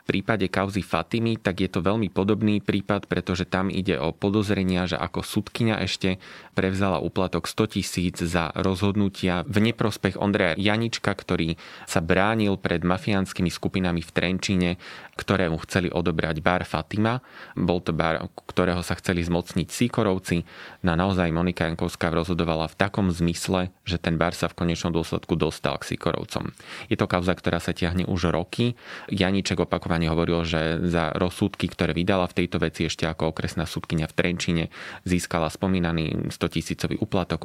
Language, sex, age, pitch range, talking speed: Slovak, male, 20-39, 85-95 Hz, 155 wpm